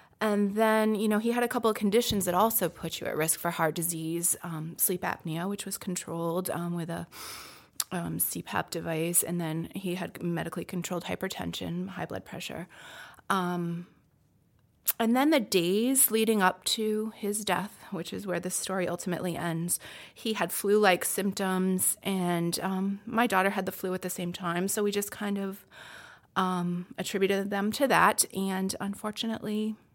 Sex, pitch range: female, 170-205 Hz